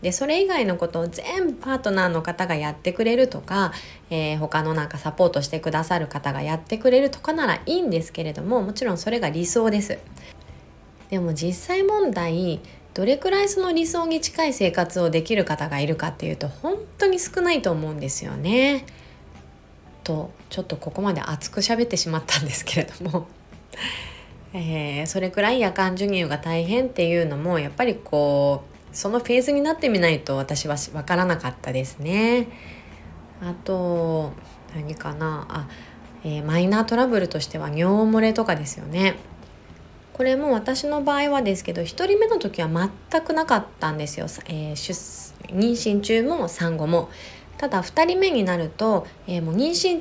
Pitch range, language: 155-235 Hz, Japanese